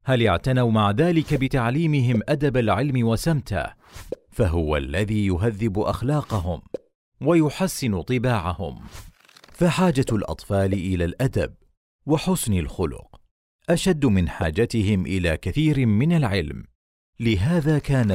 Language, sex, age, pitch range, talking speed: Arabic, male, 40-59, 90-130 Hz, 95 wpm